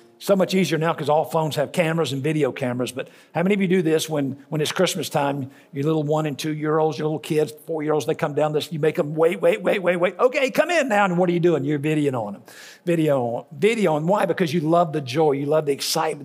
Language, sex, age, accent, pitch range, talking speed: English, male, 60-79, American, 140-165 Hz, 265 wpm